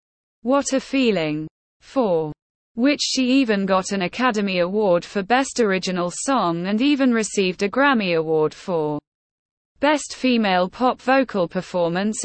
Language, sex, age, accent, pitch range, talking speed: English, female, 20-39, British, 180-250 Hz, 130 wpm